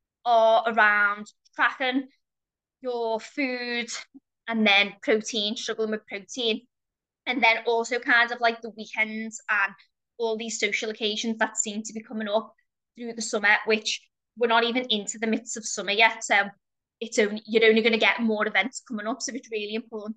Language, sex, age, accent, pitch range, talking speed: English, female, 20-39, British, 215-245 Hz, 175 wpm